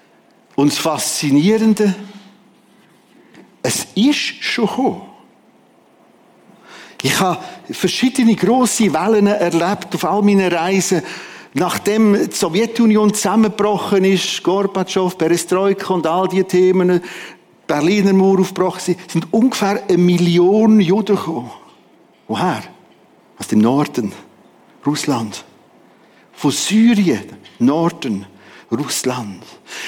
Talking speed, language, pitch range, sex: 95 wpm, German, 170-215 Hz, male